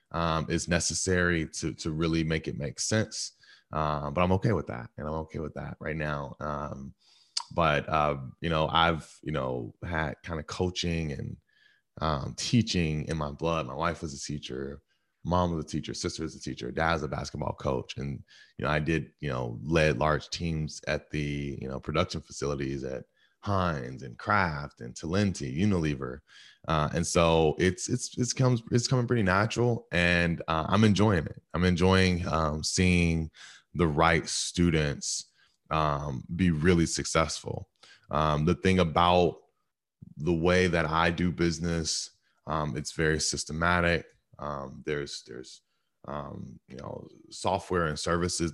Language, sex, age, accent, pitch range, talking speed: English, male, 20-39, American, 75-90 Hz, 165 wpm